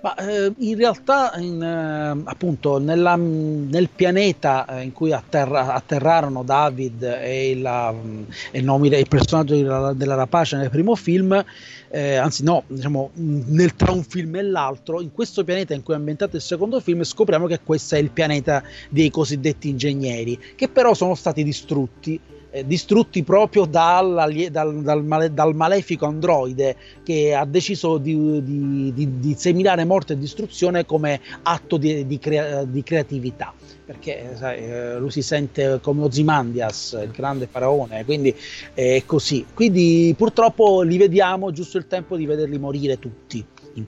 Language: Italian